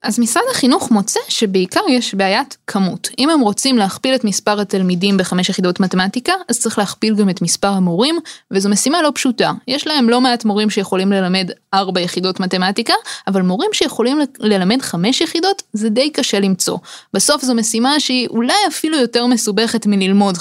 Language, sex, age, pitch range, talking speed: Hebrew, female, 20-39, 190-260 Hz, 175 wpm